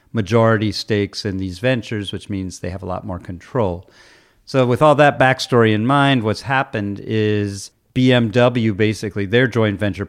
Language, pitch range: English, 100-115 Hz